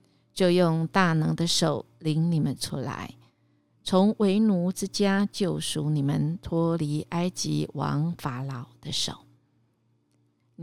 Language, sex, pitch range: Chinese, female, 120-185 Hz